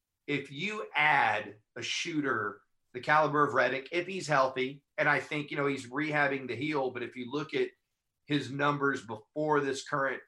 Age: 40-59